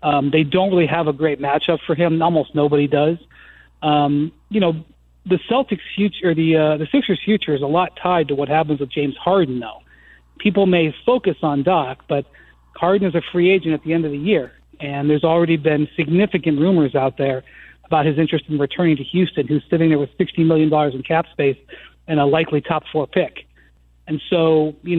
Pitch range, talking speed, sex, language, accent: 145-180 Hz, 205 wpm, male, English, American